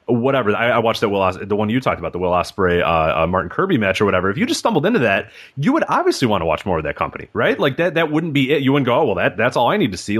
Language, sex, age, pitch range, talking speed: English, male, 30-49, 100-140 Hz, 335 wpm